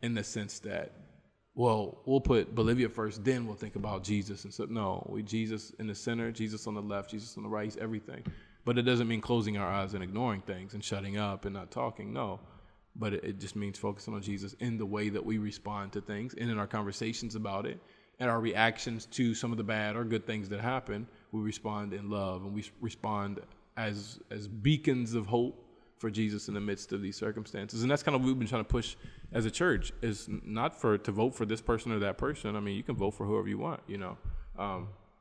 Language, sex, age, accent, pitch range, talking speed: English, male, 20-39, American, 105-115 Hz, 240 wpm